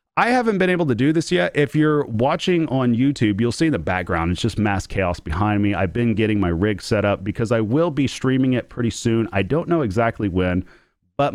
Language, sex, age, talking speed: English, male, 30-49, 240 wpm